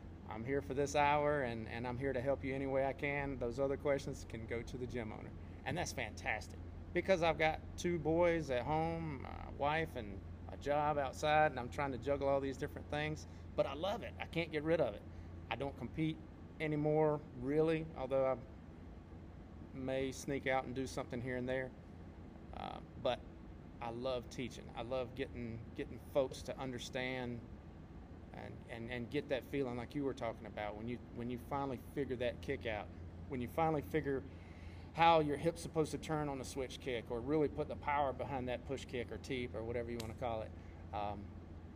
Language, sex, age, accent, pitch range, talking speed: English, male, 30-49, American, 95-145 Hz, 205 wpm